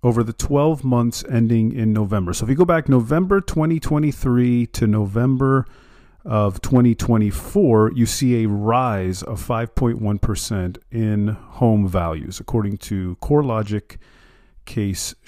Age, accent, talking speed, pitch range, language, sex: 40-59, American, 120 wpm, 100-130 Hz, English, male